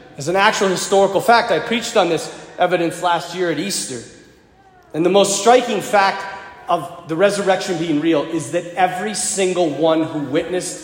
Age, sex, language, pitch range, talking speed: 40-59, male, English, 160-215 Hz, 170 wpm